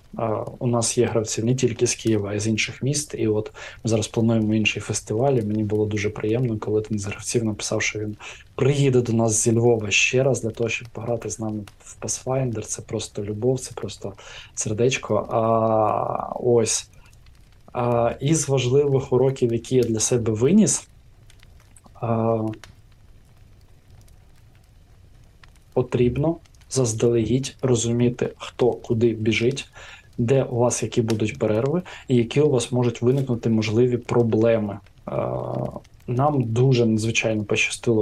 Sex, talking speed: male, 145 wpm